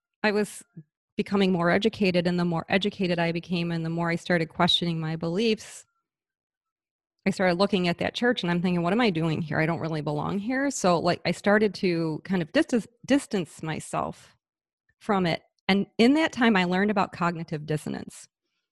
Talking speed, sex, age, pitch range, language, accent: 185 wpm, female, 30-49, 170-210 Hz, English, American